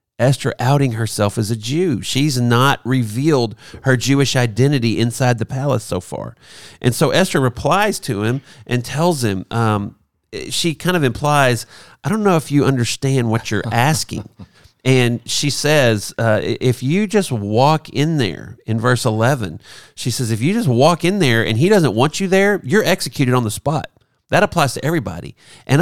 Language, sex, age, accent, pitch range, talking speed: English, male, 40-59, American, 115-155 Hz, 180 wpm